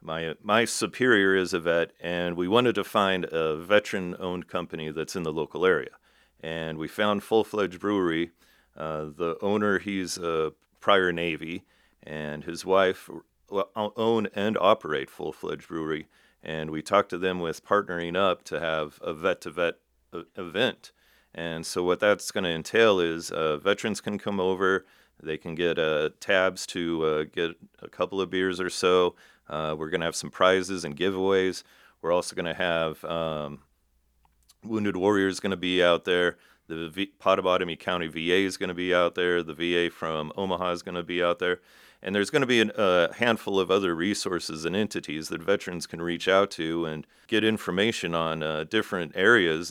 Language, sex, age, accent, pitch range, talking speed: English, male, 40-59, American, 80-95 Hz, 180 wpm